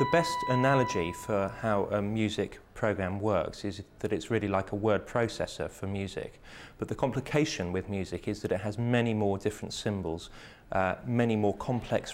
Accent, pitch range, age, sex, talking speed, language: British, 100-125 Hz, 30-49, male, 180 wpm, English